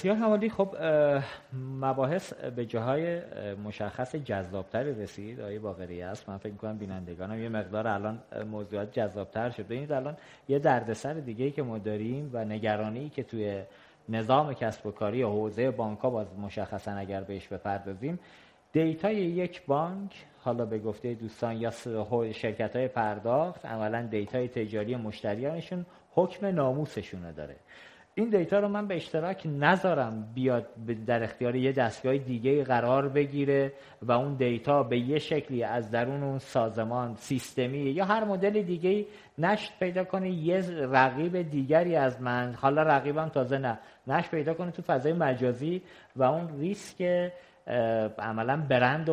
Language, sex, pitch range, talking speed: Persian, male, 110-155 Hz, 145 wpm